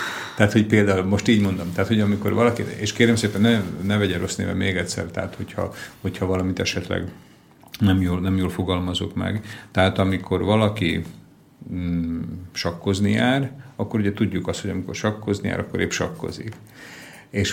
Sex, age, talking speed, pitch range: male, 50-69, 170 wpm, 85-100 Hz